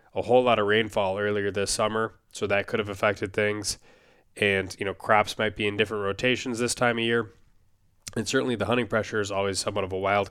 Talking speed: 220 wpm